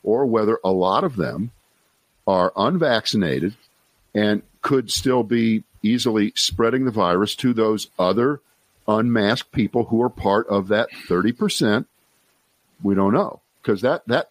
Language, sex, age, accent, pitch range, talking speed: English, male, 50-69, American, 100-140 Hz, 140 wpm